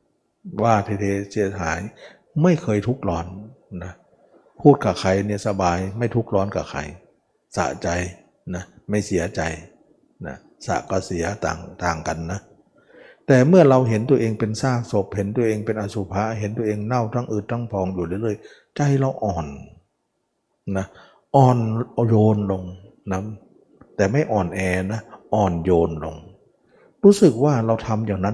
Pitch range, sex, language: 95-130 Hz, male, Thai